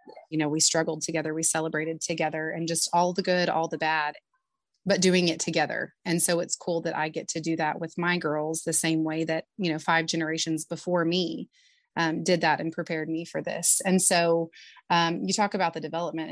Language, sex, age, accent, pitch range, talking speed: English, female, 30-49, American, 160-180 Hz, 215 wpm